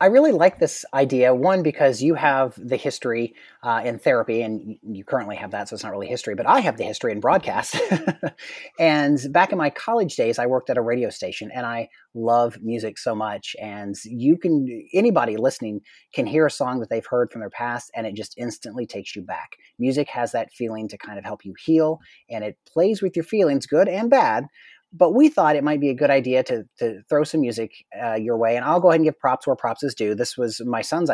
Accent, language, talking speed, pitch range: American, English, 235 wpm, 115-150 Hz